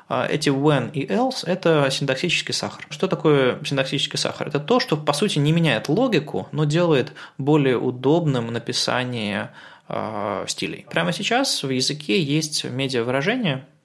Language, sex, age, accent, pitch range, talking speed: Russian, male, 20-39, native, 125-165 Hz, 140 wpm